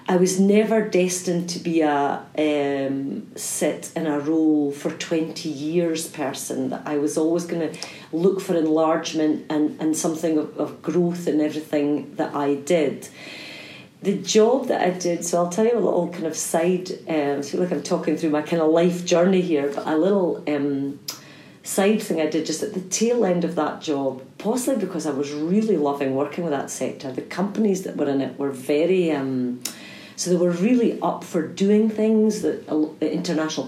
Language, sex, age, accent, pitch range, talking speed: English, female, 40-59, British, 150-185 Hz, 190 wpm